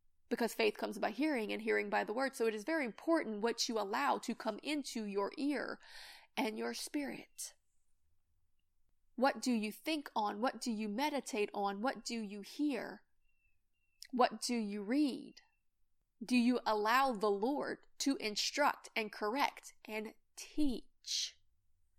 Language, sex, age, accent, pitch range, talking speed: English, female, 20-39, American, 210-270 Hz, 150 wpm